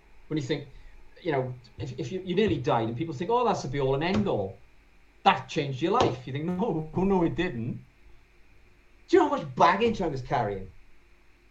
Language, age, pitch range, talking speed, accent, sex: English, 40-59, 120-190 Hz, 210 wpm, British, male